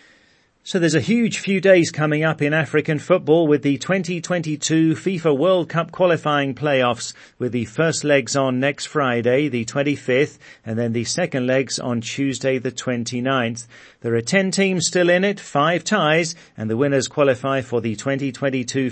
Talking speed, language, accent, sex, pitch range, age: 170 wpm, English, British, male, 125-160 Hz, 40-59